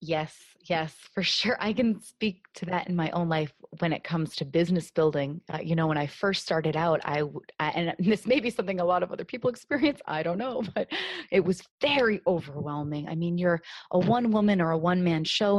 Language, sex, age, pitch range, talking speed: English, female, 30-49, 165-220 Hz, 225 wpm